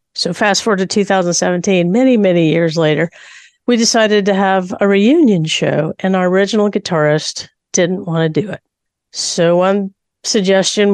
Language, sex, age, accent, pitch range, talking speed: English, female, 50-69, American, 170-210 Hz, 155 wpm